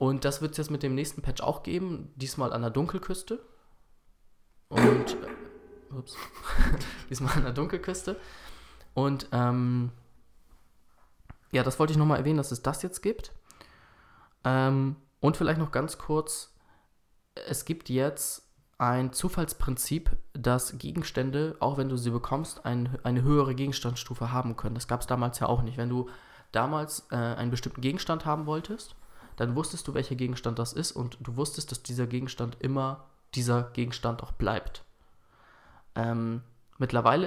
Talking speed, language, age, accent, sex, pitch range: 150 wpm, German, 20-39, German, male, 125-150 Hz